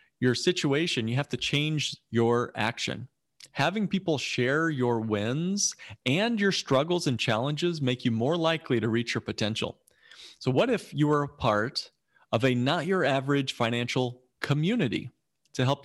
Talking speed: 160 wpm